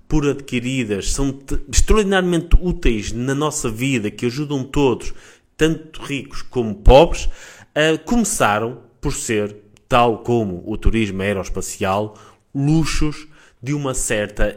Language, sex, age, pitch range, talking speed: Portuguese, male, 20-39, 110-135 Hz, 110 wpm